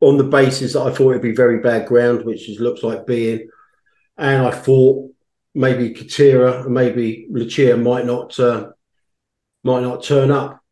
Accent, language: British, English